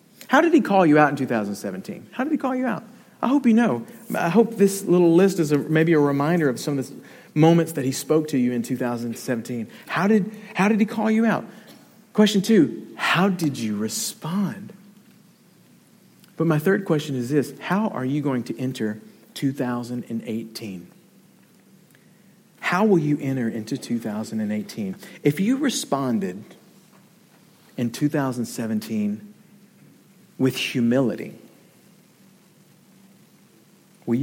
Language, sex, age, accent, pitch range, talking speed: English, male, 50-69, American, 120-195 Hz, 140 wpm